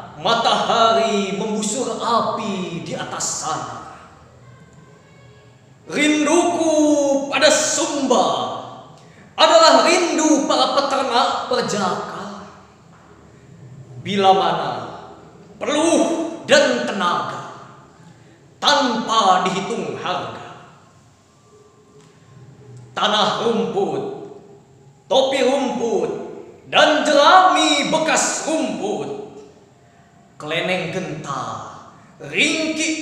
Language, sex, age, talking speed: Indonesian, male, 20-39, 60 wpm